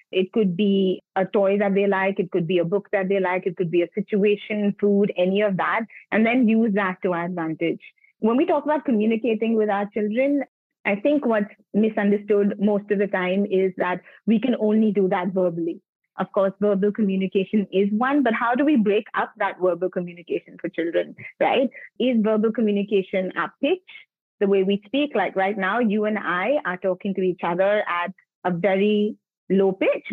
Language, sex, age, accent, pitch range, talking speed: English, female, 30-49, Indian, 185-215 Hz, 195 wpm